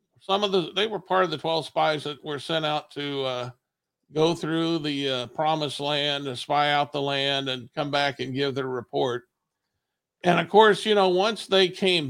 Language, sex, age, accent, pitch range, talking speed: English, male, 50-69, American, 145-185 Hz, 210 wpm